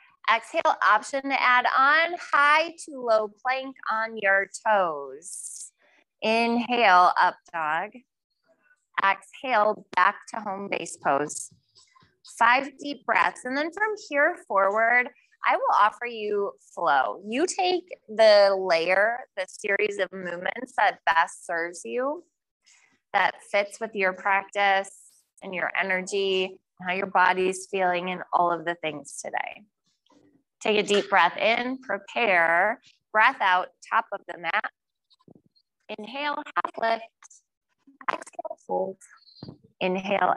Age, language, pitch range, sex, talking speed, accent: 20-39, English, 185-265 Hz, female, 120 wpm, American